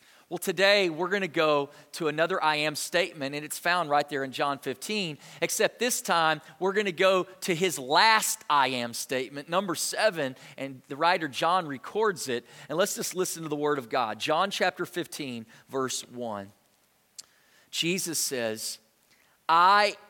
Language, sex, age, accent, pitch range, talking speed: English, male, 40-59, American, 145-205 Hz, 170 wpm